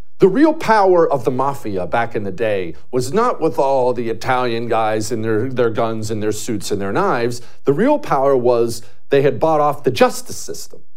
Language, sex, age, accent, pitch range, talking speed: English, male, 40-59, American, 105-150 Hz, 210 wpm